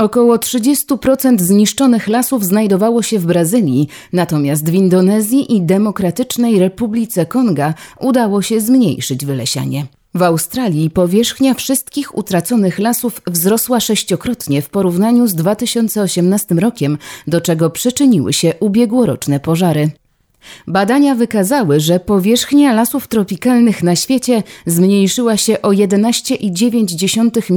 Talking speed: 110 wpm